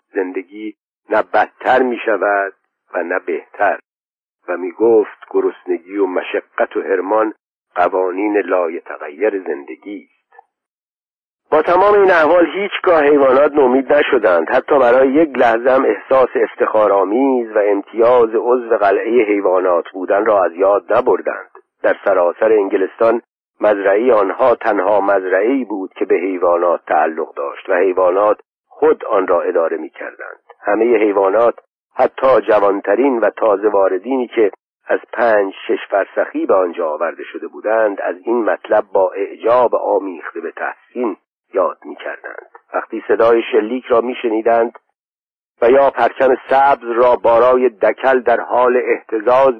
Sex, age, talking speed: male, 50-69, 135 wpm